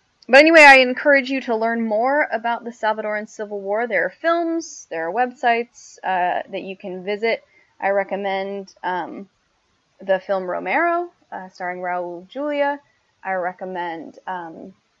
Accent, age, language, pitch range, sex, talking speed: American, 10-29, English, 185-235 Hz, female, 150 wpm